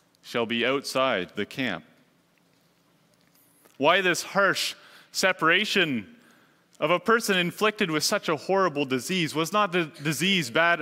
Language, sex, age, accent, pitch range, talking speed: English, male, 30-49, American, 155-195 Hz, 130 wpm